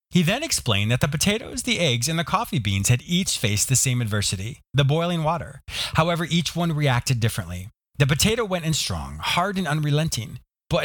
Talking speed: 195 wpm